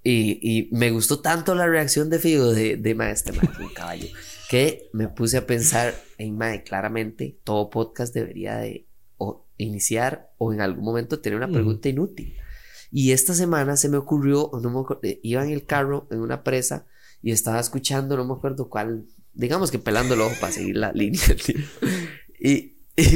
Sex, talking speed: male, 185 wpm